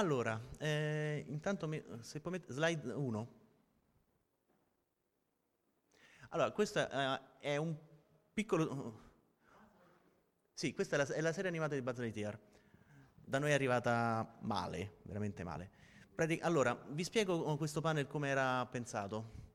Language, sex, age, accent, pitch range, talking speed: Italian, male, 30-49, native, 125-155 Hz, 130 wpm